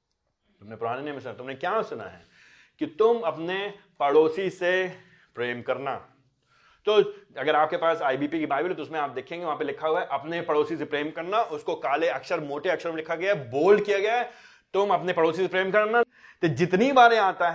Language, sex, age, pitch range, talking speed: Hindi, male, 30-49, 150-210 Hz, 200 wpm